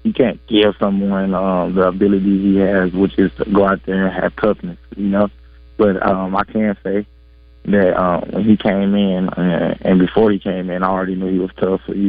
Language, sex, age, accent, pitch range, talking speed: English, male, 20-39, American, 90-100 Hz, 220 wpm